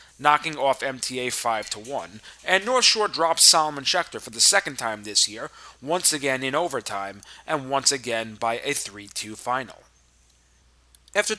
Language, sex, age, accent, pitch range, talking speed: English, male, 30-49, American, 115-155 Hz, 155 wpm